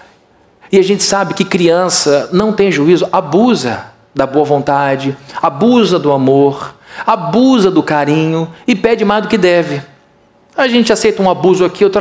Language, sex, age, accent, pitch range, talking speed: Portuguese, male, 40-59, Brazilian, 160-205 Hz, 160 wpm